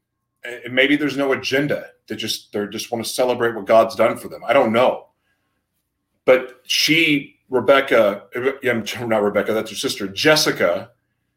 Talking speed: 150 wpm